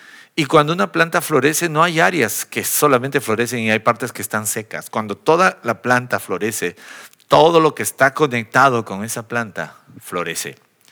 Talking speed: 170 wpm